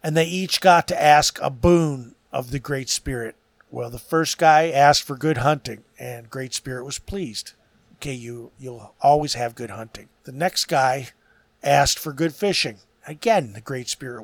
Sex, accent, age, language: male, American, 50-69, English